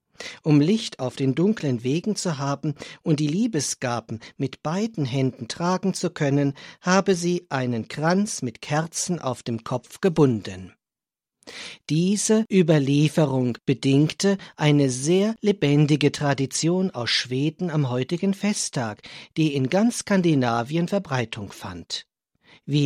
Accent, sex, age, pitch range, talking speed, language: German, male, 50-69, 130-185 Hz, 120 wpm, German